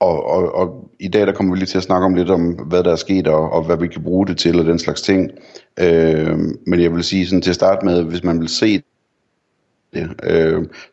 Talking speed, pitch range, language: 260 wpm, 80-95 Hz, Danish